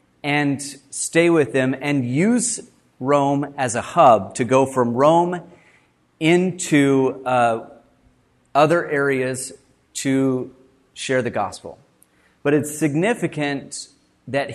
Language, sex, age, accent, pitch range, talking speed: English, male, 30-49, American, 130-160 Hz, 105 wpm